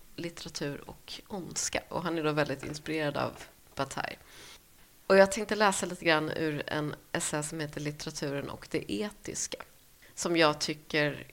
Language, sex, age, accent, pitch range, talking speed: Swedish, female, 30-49, native, 150-195 Hz, 155 wpm